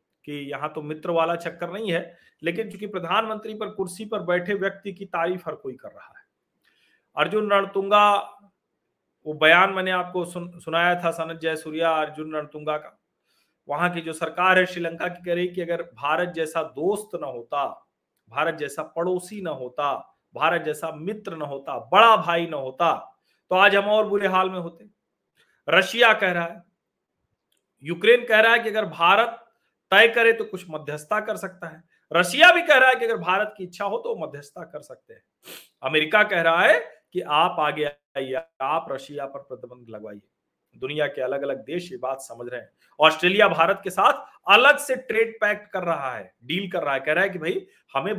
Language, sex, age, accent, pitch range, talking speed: Hindi, male, 40-59, native, 160-210 Hz, 190 wpm